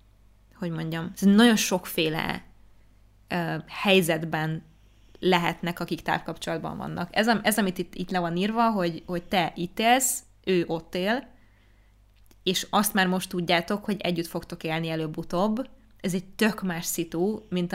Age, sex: 20-39, female